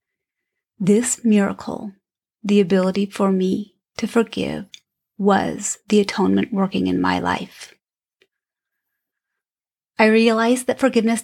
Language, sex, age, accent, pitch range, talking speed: English, female, 30-49, American, 195-240 Hz, 100 wpm